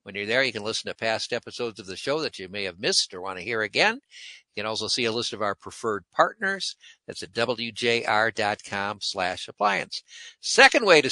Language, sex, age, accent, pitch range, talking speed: English, male, 60-79, American, 125-170 Hz, 215 wpm